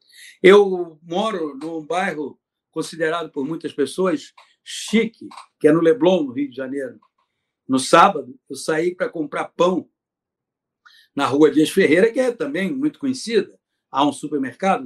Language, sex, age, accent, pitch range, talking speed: Portuguese, male, 60-79, Brazilian, 170-255 Hz, 145 wpm